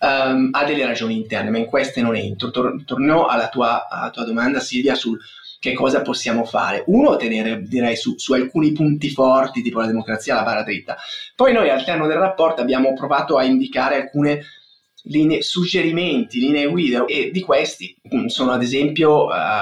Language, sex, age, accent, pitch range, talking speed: Italian, male, 30-49, native, 125-180 Hz, 185 wpm